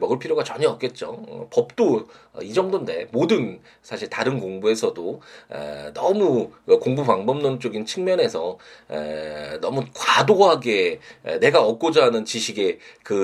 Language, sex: Korean, male